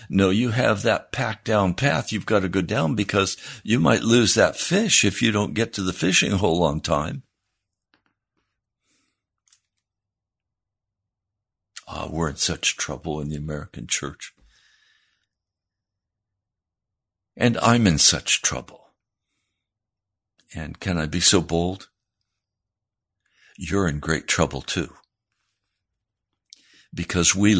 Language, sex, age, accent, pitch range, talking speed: English, male, 60-79, American, 90-110 Hz, 120 wpm